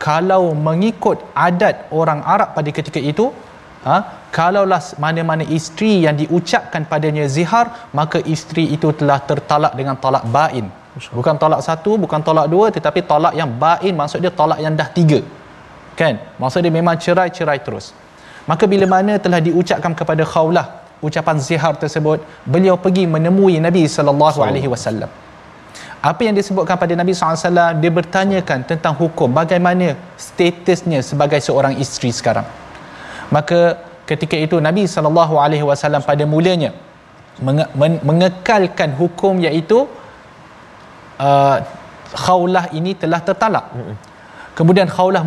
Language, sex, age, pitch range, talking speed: Malayalam, male, 20-39, 150-180 Hz, 135 wpm